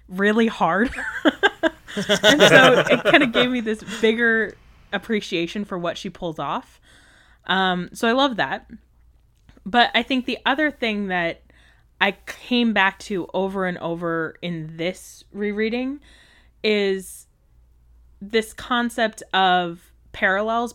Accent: American